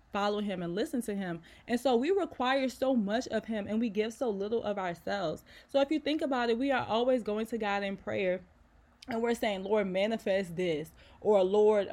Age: 20-39